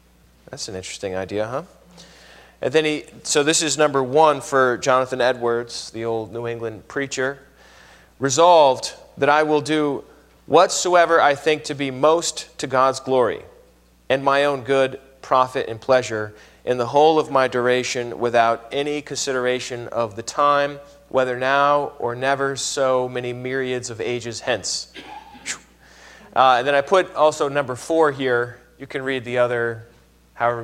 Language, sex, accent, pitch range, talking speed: English, male, American, 120-150 Hz, 155 wpm